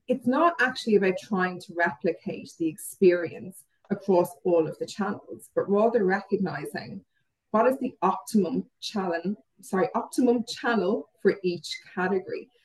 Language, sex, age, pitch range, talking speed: English, female, 30-49, 170-210 Hz, 135 wpm